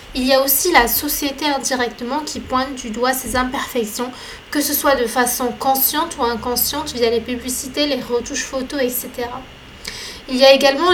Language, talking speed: French, 175 wpm